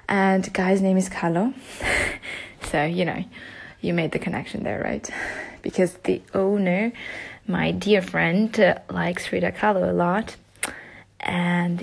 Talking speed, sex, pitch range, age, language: 140 wpm, female, 175-215 Hz, 20-39, English